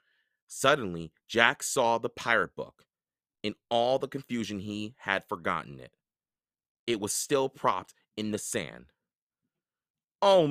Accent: American